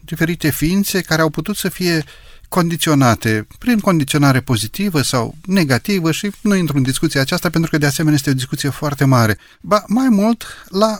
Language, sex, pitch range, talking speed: Romanian, male, 115-170 Hz, 175 wpm